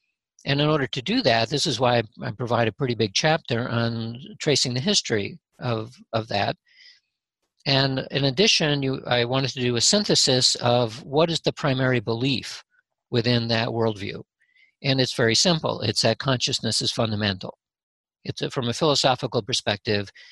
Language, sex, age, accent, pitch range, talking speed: English, male, 50-69, American, 115-150 Hz, 165 wpm